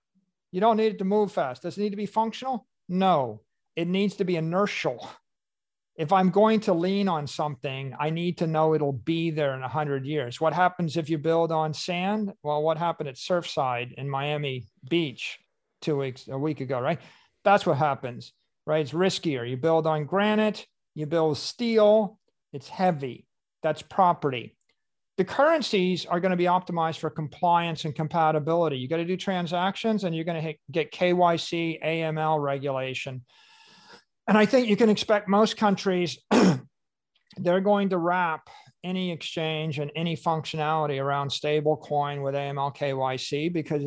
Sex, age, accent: male, 50-69, American